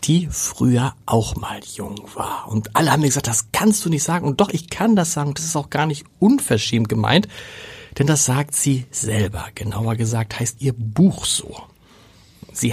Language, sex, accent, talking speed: German, male, German, 195 wpm